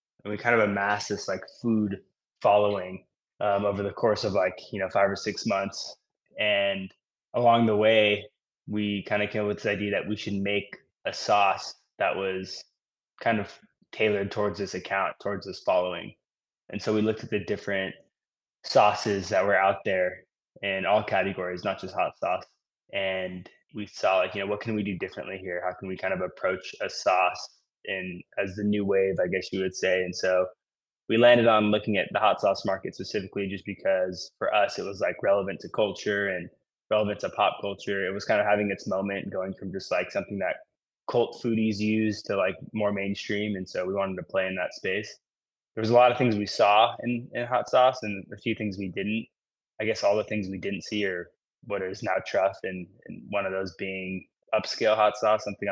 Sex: male